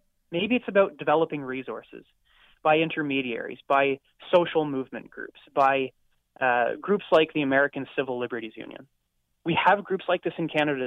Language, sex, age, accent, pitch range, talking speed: English, male, 20-39, American, 140-190 Hz, 150 wpm